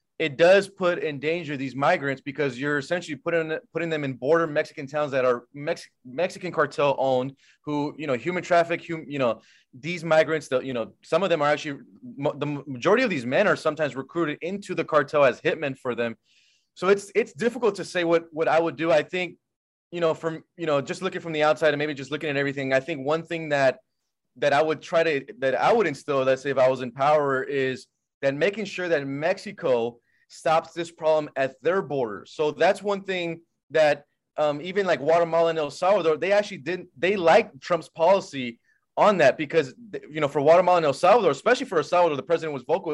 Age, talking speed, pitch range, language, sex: 20-39, 210 wpm, 140-170 Hz, English, male